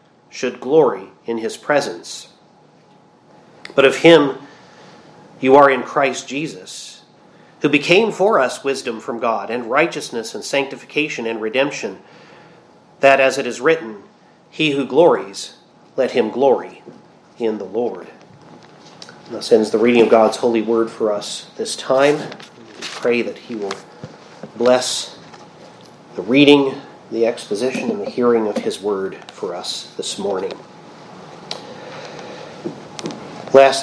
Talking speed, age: 130 wpm, 40-59